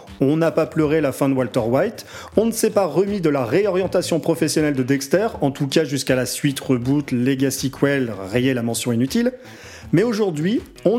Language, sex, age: French, male, 40-59